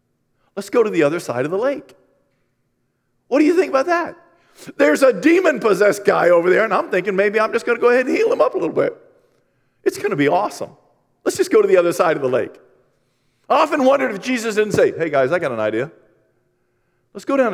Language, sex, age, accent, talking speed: English, male, 40-59, American, 235 wpm